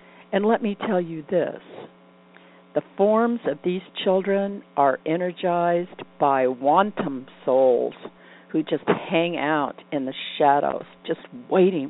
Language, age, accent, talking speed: English, 60-79, American, 125 wpm